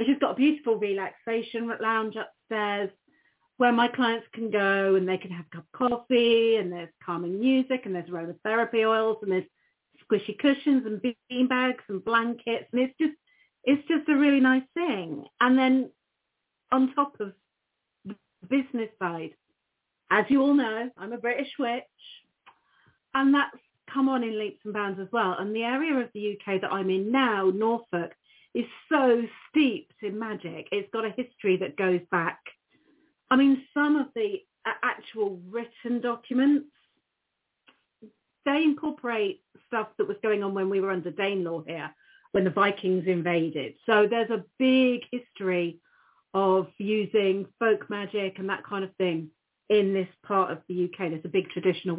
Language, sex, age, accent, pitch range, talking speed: English, female, 40-59, British, 190-260 Hz, 165 wpm